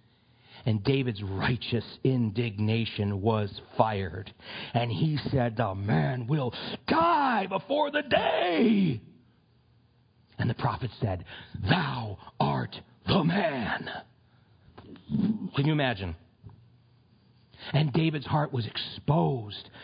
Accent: American